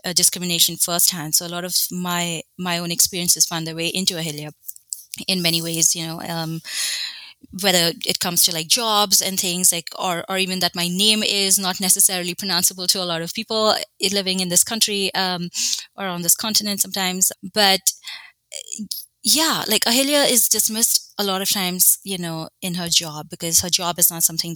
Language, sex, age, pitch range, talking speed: English, female, 20-39, 170-210 Hz, 185 wpm